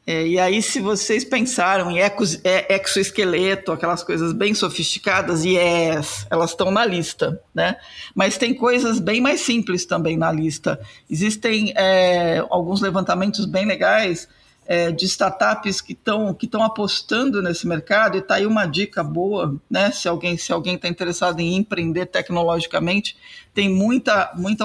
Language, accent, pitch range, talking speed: Portuguese, Brazilian, 180-210 Hz, 140 wpm